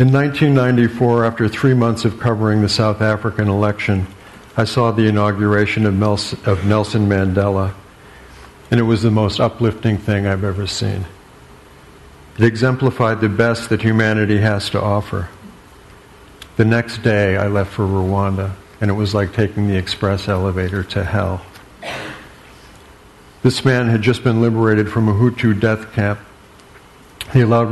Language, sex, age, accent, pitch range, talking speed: English, male, 60-79, American, 100-115 Hz, 145 wpm